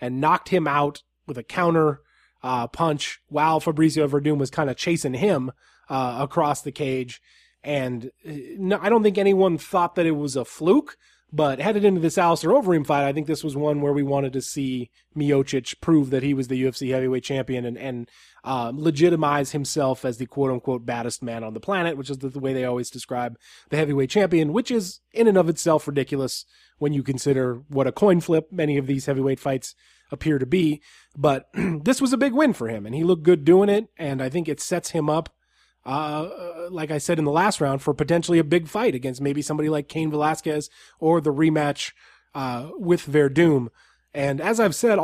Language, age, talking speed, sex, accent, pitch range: English, 20-39, 205 wpm, male, American, 135-165 Hz